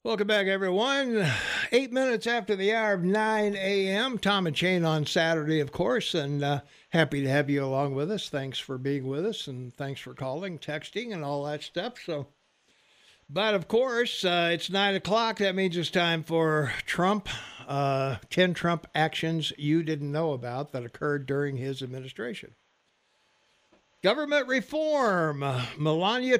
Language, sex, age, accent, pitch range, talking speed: English, male, 60-79, American, 155-205 Hz, 160 wpm